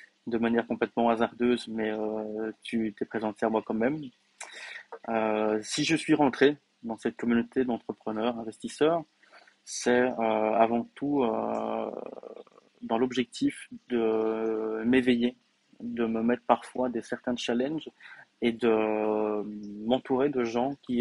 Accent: French